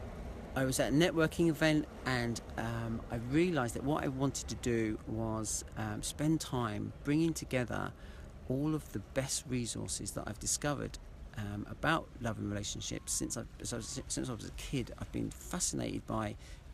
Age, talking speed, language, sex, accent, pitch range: 40-59, 165 wpm, English, male, British, 100-135 Hz